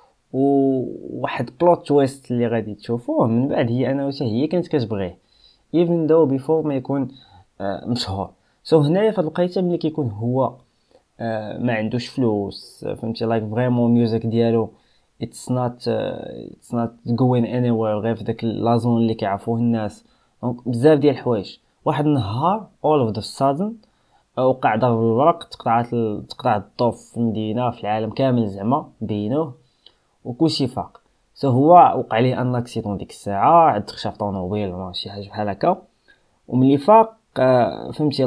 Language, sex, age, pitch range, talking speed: Arabic, male, 20-39, 115-145 Hz, 140 wpm